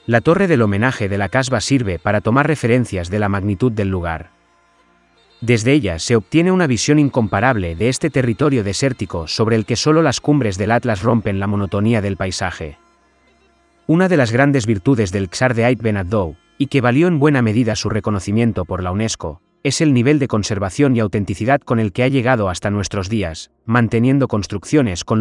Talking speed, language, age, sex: 185 wpm, Spanish, 30-49, male